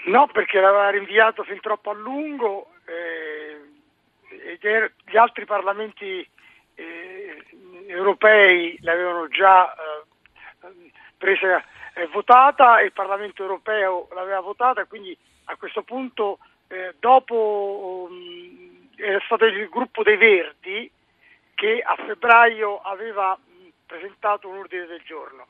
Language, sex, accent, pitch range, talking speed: Italian, male, native, 185-255 Hz, 120 wpm